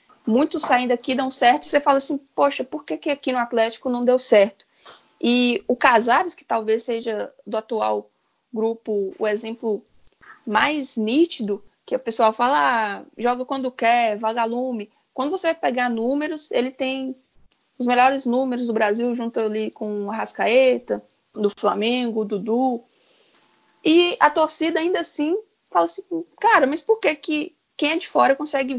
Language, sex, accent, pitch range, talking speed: Portuguese, female, Brazilian, 225-295 Hz, 160 wpm